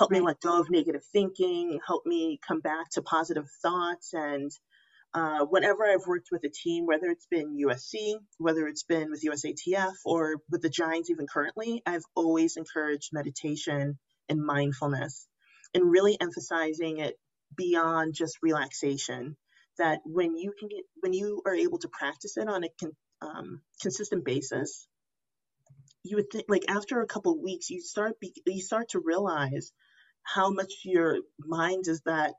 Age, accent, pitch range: 30-49, American, 155-210 Hz